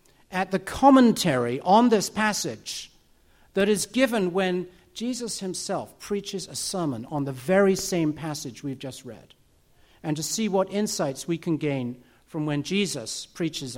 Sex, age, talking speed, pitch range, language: male, 50-69, 155 wpm, 145-190 Hz, Arabic